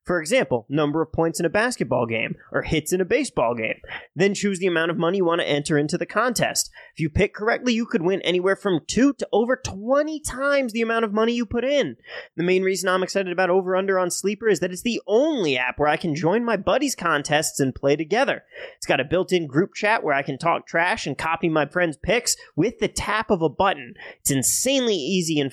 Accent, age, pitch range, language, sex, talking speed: American, 30-49, 155-230 Hz, English, male, 235 wpm